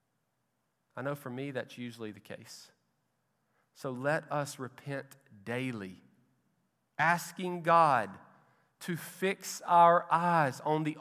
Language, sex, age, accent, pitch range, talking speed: English, male, 40-59, American, 130-180 Hz, 115 wpm